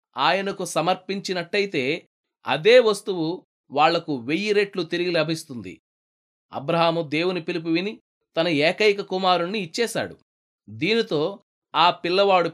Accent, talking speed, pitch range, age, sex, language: native, 95 wpm, 165-205 Hz, 20-39, male, Telugu